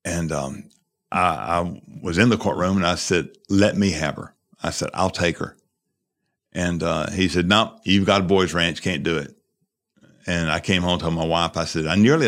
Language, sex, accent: English, male, American